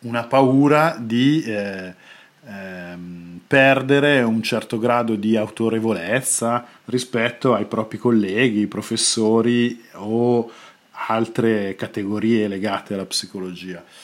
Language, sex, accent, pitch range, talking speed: Italian, male, native, 105-130 Hz, 95 wpm